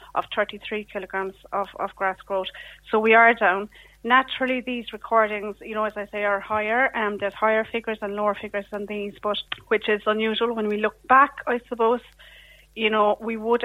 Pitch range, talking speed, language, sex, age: 205-225 Hz, 195 wpm, English, female, 30-49